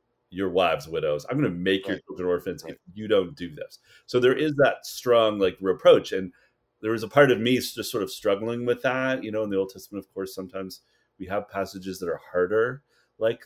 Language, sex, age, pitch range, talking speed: English, male, 30-49, 95-130 Hz, 225 wpm